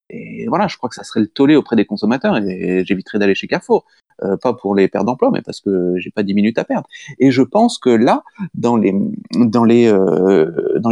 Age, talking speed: 30-49, 235 wpm